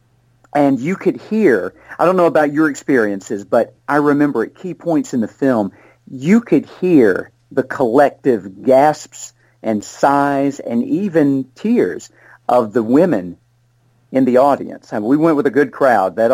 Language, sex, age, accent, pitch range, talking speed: English, male, 50-69, American, 120-160 Hz, 170 wpm